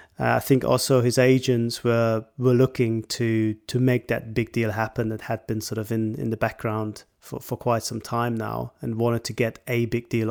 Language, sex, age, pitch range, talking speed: English, male, 30-49, 115-135 Hz, 220 wpm